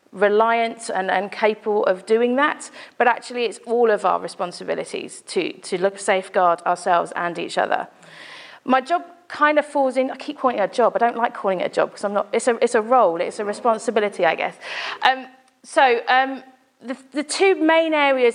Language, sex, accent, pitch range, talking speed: English, female, British, 200-255 Hz, 205 wpm